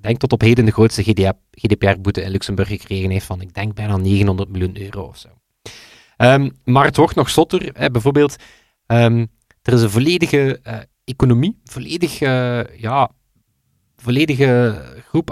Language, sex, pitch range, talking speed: Dutch, male, 115-135 Hz, 160 wpm